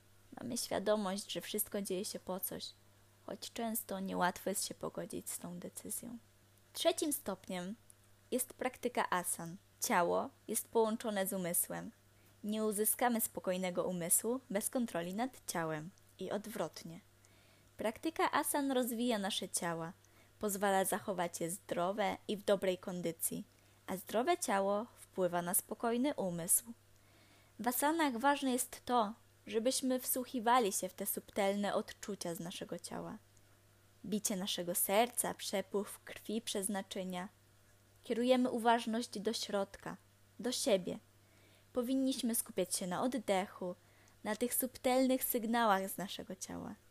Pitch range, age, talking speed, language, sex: 175-235 Hz, 20-39, 125 wpm, Polish, female